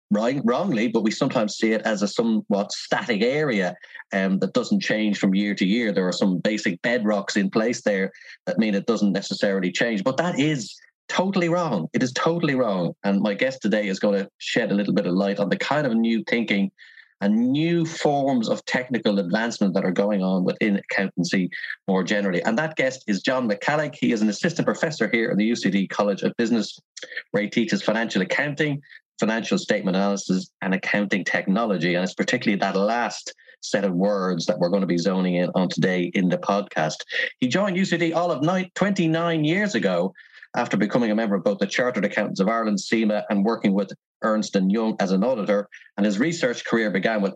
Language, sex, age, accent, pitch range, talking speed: English, male, 30-49, Irish, 100-130 Hz, 205 wpm